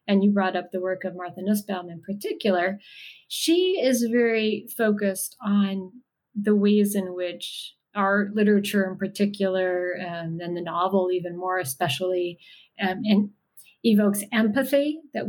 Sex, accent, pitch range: female, American, 180-210 Hz